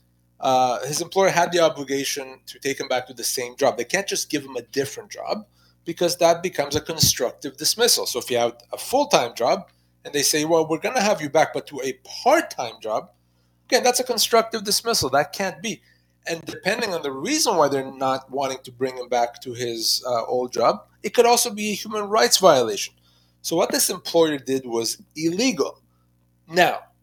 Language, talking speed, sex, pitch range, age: English, 205 wpm, male, 120-180 Hz, 30-49